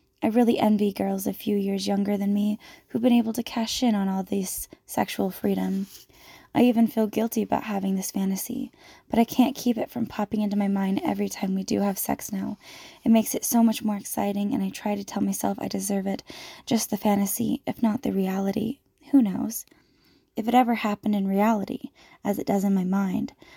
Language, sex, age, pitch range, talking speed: English, female, 10-29, 200-240 Hz, 210 wpm